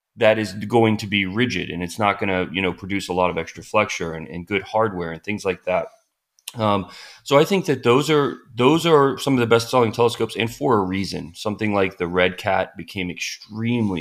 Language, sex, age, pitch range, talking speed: English, male, 30-49, 90-110 Hz, 220 wpm